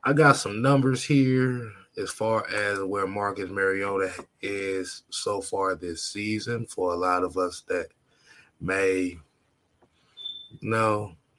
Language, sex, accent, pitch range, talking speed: English, male, American, 95-130 Hz, 125 wpm